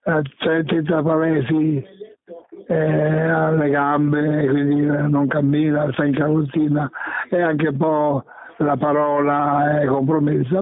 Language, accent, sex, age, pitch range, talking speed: Italian, native, male, 60-79, 145-165 Hz, 105 wpm